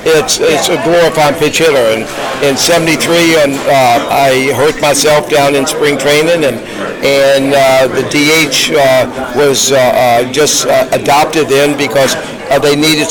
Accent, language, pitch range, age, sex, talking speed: American, English, 135-150 Hz, 50-69, male, 160 wpm